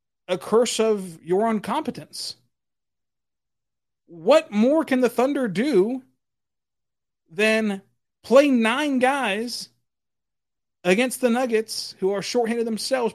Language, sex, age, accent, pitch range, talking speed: English, male, 30-49, American, 190-245 Hz, 100 wpm